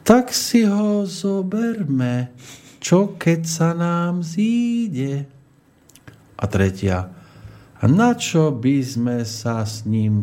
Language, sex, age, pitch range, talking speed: Slovak, male, 50-69, 105-165 Hz, 105 wpm